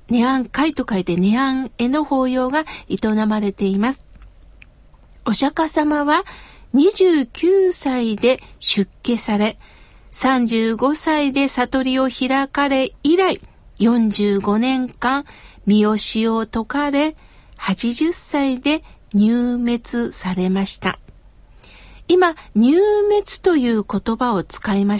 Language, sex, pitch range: Japanese, female, 215-295 Hz